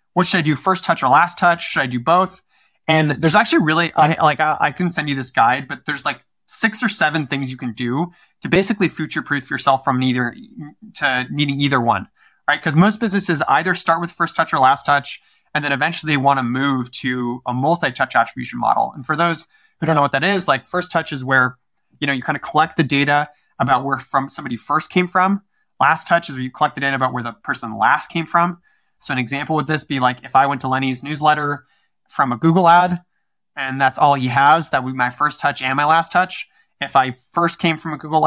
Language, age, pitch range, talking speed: English, 20-39, 135-170 Hz, 240 wpm